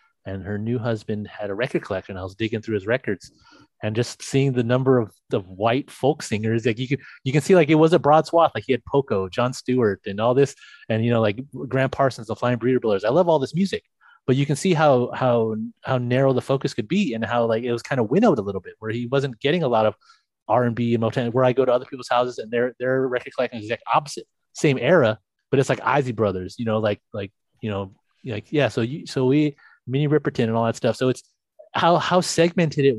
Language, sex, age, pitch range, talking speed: English, male, 30-49, 115-135 Hz, 260 wpm